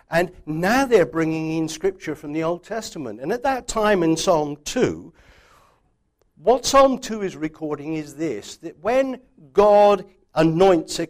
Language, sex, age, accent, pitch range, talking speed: English, male, 60-79, British, 145-200 Hz, 155 wpm